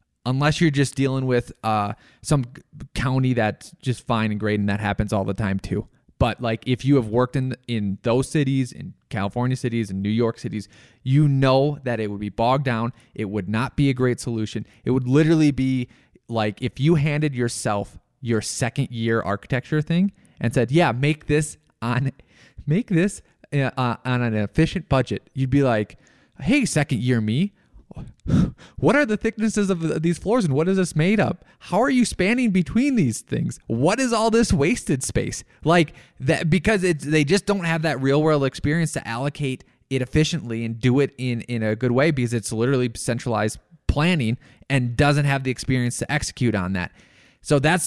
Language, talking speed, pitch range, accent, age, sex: English, 190 wpm, 115-155 Hz, American, 20-39, male